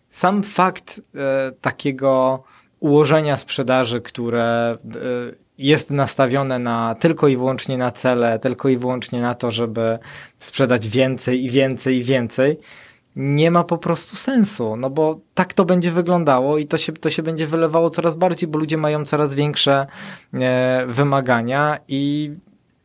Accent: native